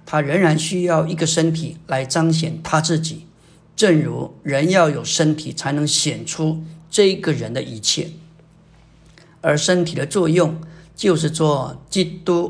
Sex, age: male, 50-69